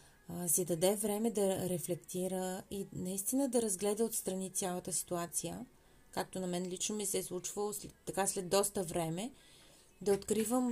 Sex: female